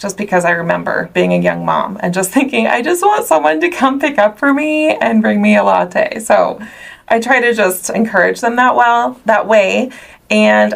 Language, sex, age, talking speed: English, female, 20-39, 210 wpm